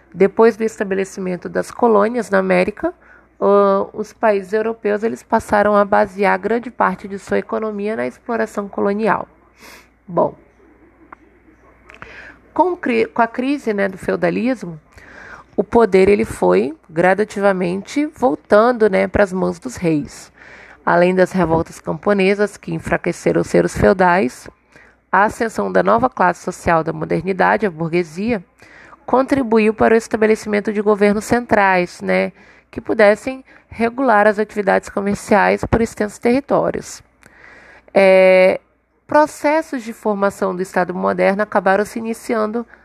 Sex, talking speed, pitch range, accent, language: female, 120 wpm, 190-230 Hz, Brazilian, Portuguese